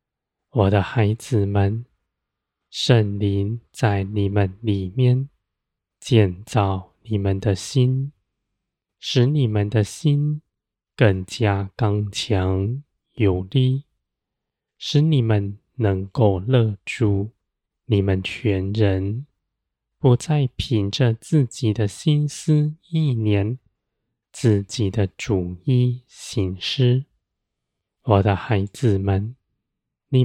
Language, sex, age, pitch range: Chinese, male, 20-39, 100-125 Hz